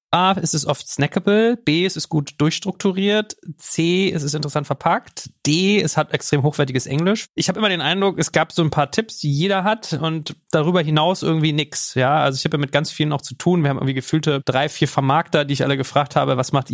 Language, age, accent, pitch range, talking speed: German, 30-49, German, 140-165 Hz, 235 wpm